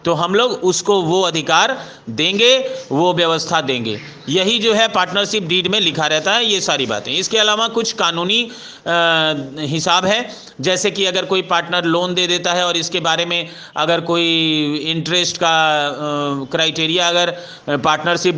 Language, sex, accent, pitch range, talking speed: Hindi, male, native, 165-200 Hz, 160 wpm